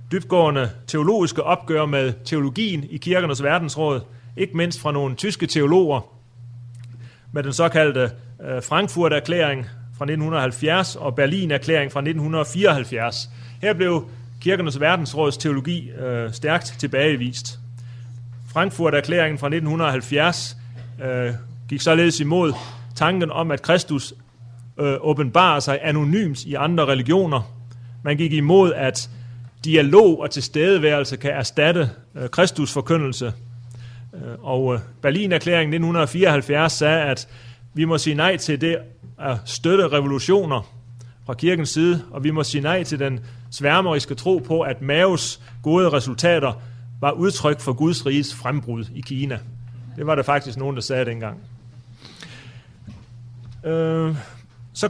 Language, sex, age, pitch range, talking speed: Danish, male, 30-49, 120-160 Hz, 115 wpm